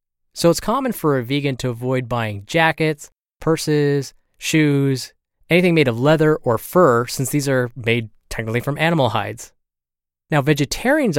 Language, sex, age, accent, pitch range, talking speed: English, male, 20-39, American, 115-155 Hz, 150 wpm